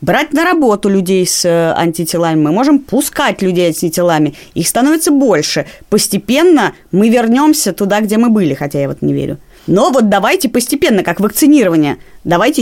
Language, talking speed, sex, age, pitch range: Russian, 160 wpm, female, 20-39, 160-235 Hz